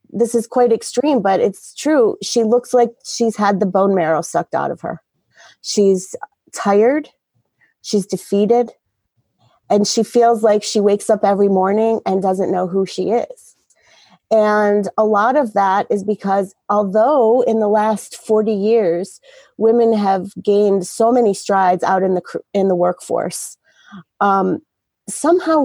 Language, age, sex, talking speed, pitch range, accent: English, 30-49, female, 150 wpm, 195-235 Hz, American